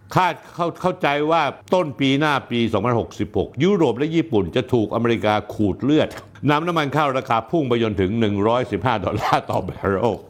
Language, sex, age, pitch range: Thai, male, 60-79, 115-160 Hz